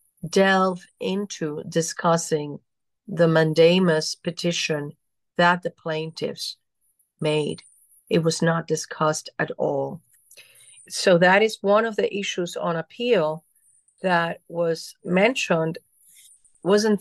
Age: 50-69